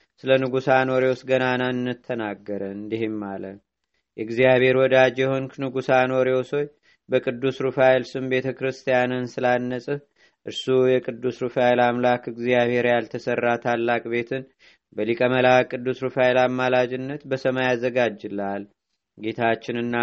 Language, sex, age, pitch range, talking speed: Amharic, male, 30-49, 120-130 Hz, 100 wpm